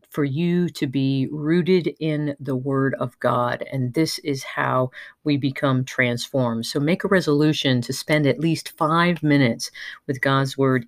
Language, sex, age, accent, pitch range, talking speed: English, female, 40-59, American, 130-155 Hz, 165 wpm